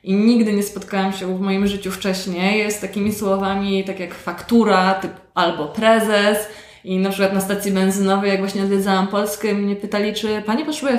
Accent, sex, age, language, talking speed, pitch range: native, female, 20-39, Polish, 185 wpm, 195-225 Hz